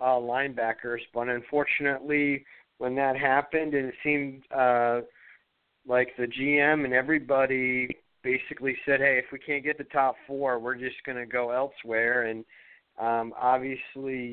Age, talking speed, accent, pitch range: 40-59, 145 wpm, American, 120-140 Hz